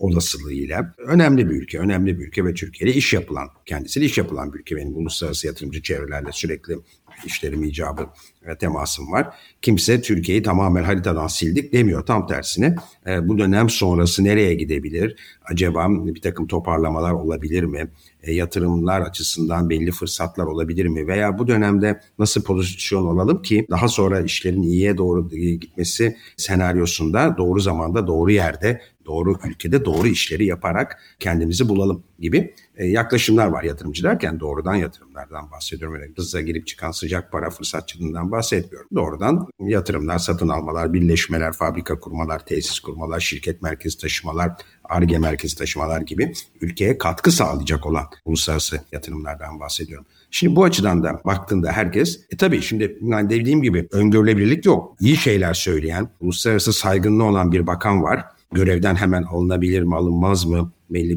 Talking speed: 140 wpm